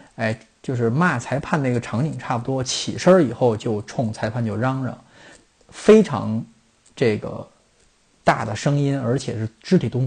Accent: native